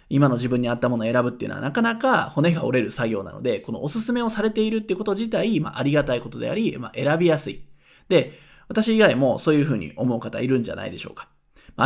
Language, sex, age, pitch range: Japanese, male, 20-39, 125-190 Hz